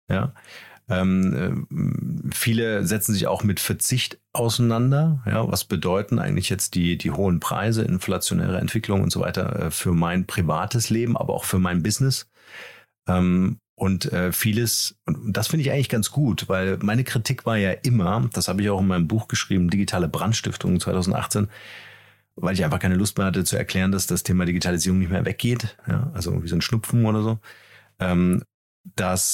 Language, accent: German, German